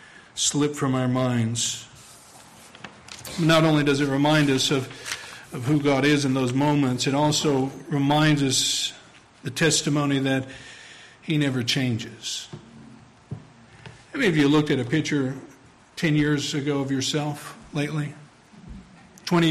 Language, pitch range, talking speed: English, 130-165 Hz, 130 wpm